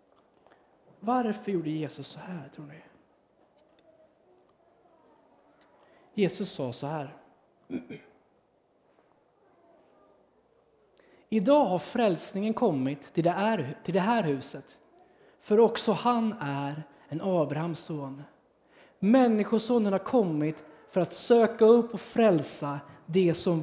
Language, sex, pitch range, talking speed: Swedish, male, 170-260 Hz, 95 wpm